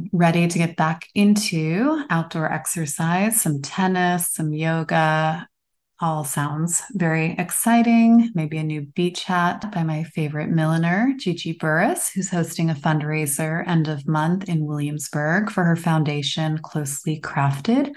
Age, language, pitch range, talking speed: 30-49, English, 155-195 Hz, 135 wpm